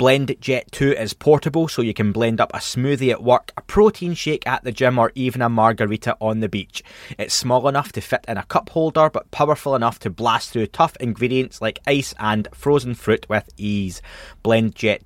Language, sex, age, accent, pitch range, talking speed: English, male, 20-39, British, 110-140 Hz, 210 wpm